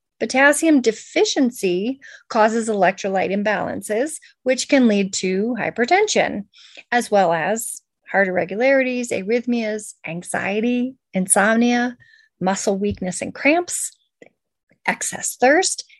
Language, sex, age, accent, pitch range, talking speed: English, female, 30-49, American, 210-280 Hz, 90 wpm